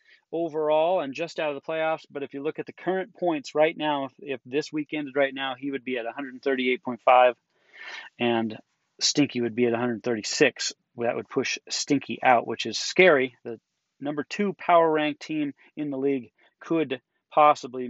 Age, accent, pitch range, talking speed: 30-49, American, 135-170 Hz, 180 wpm